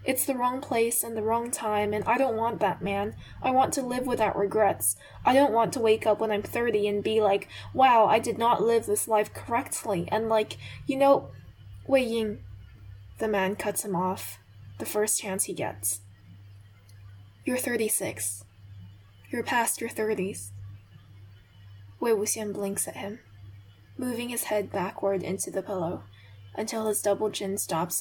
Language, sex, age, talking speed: English, female, 10-29, 170 wpm